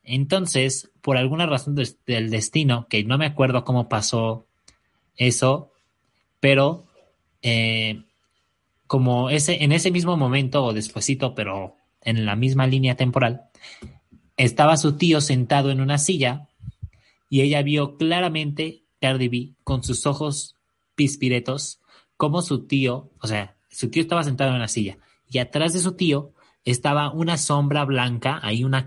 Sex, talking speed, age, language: male, 140 wpm, 30-49, Spanish